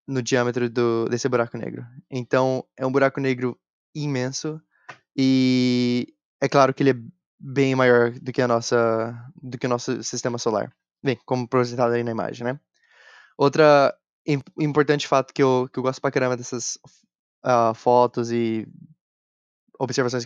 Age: 10-29